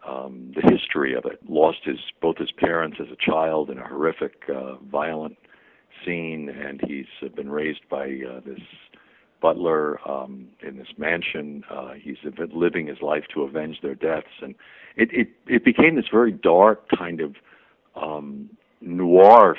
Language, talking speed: English, 160 wpm